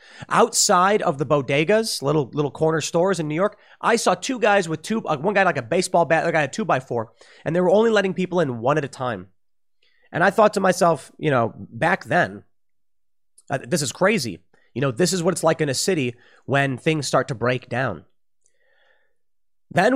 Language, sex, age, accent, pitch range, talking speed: English, male, 30-49, American, 130-180 Hz, 205 wpm